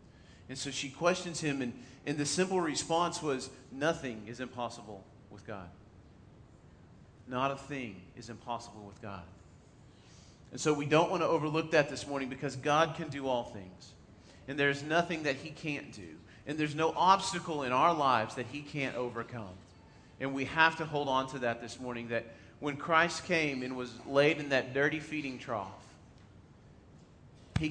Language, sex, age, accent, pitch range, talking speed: English, male, 40-59, American, 115-145 Hz, 175 wpm